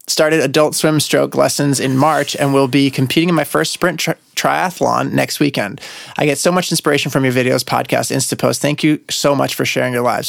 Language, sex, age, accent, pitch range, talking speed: English, male, 30-49, American, 130-155 Hz, 215 wpm